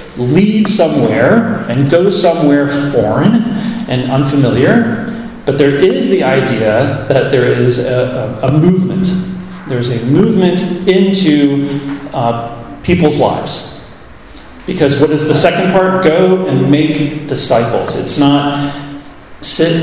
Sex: male